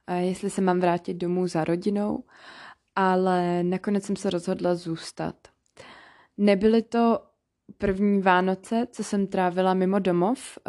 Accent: native